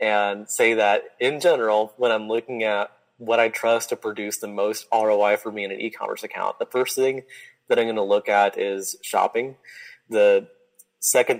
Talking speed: 190 wpm